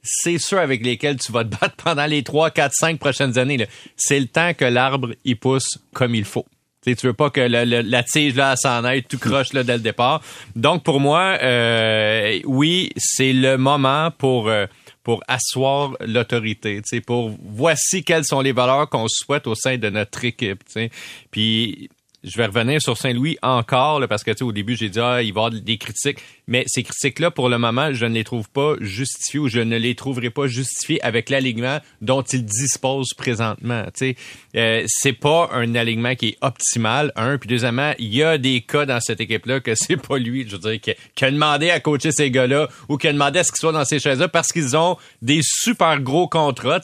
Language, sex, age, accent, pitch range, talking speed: French, male, 30-49, Canadian, 120-145 Hz, 220 wpm